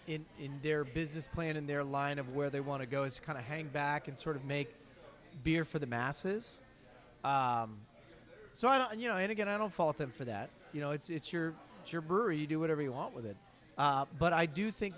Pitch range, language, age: 145-175 Hz, English, 30-49